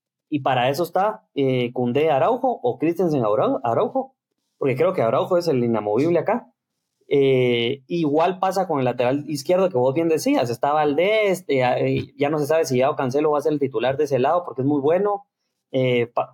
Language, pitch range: English, 130-175 Hz